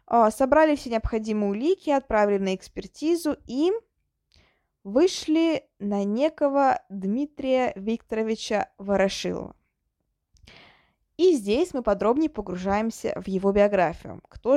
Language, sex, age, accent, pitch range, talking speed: Russian, female, 20-39, native, 205-280 Hz, 95 wpm